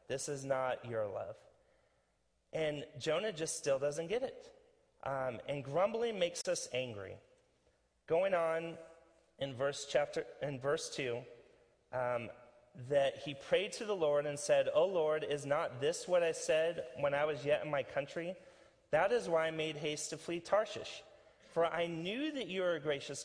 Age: 30-49